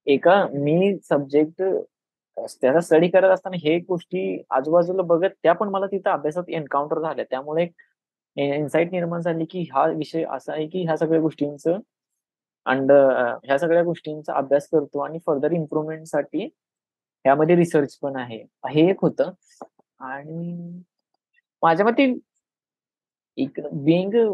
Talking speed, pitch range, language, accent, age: 130 wpm, 145-180 Hz, Marathi, native, 20-39